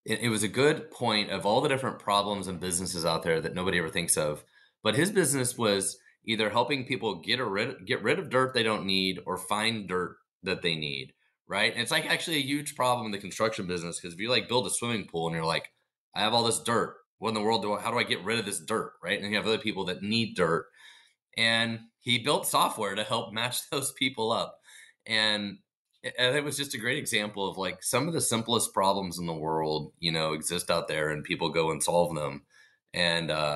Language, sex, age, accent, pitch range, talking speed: English, male, 30-49, American, 85-115 Hz, 240 wpm